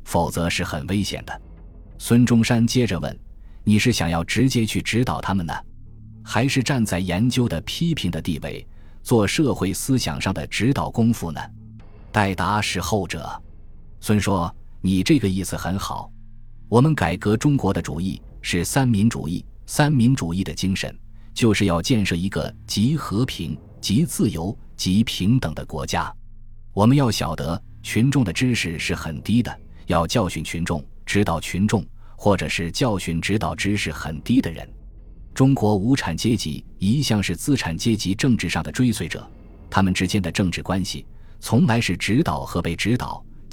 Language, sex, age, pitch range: Chinese, male, 20-39, 85-115 Hz